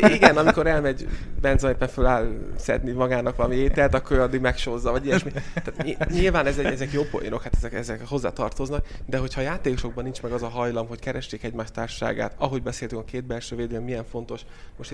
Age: 20-39